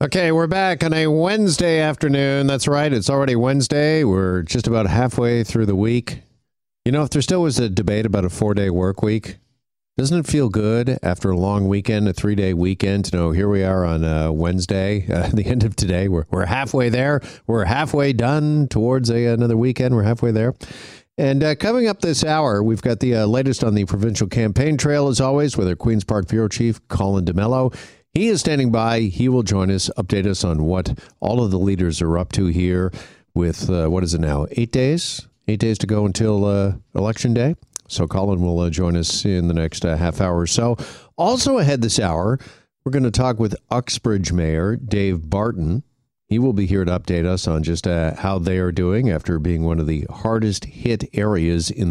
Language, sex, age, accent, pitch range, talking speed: English, male, 50-69, American, 90-130 Hz, 210 wpm